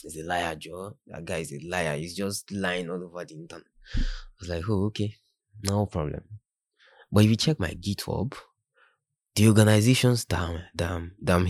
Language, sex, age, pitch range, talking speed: English, male, 20-39, 80-100 Hz, 180 wpm